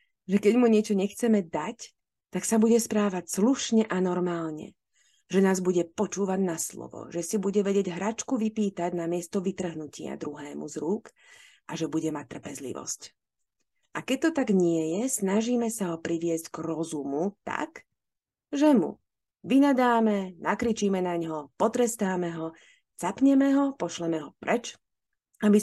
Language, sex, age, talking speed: Slovak, female, 30-49, 145 wpm